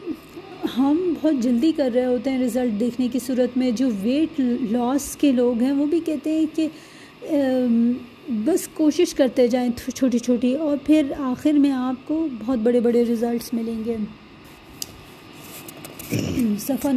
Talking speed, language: 135 wpm, English